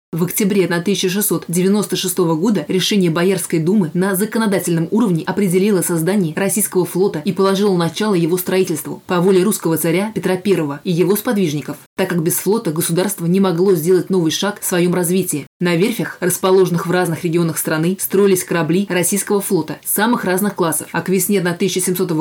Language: Russian